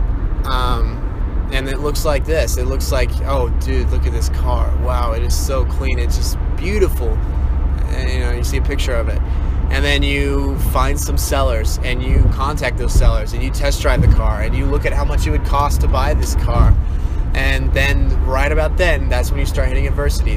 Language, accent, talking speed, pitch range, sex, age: English, American, 215 wpm, 70-85 Hz, male, 20-39